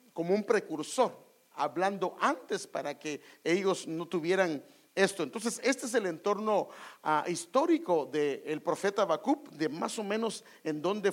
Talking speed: 150 wpm